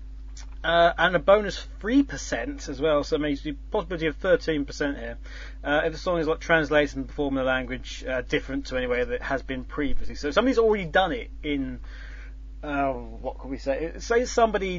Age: 30-49